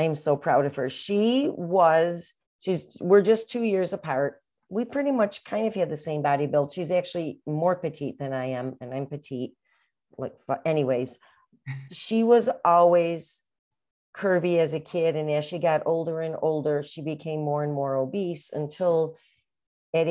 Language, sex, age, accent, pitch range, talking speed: English, female, 40-59, American, 145-180 Hz, 170 wpm